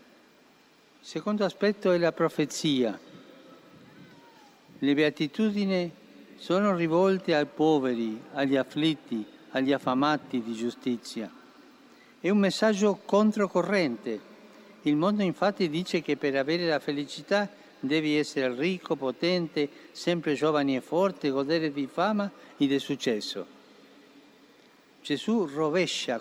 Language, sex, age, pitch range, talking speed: Italian, male, 60-79, 135-180 Hz, 110 wpm